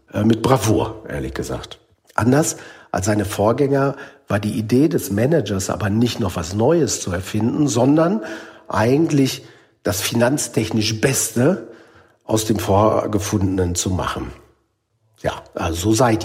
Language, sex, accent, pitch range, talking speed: German, male, German, 105-135 Hz, 120 wpm